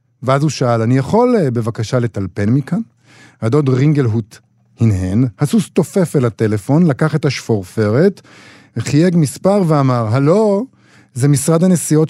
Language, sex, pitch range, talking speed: Hebrew, male, 120-170 Hz, 135 wpm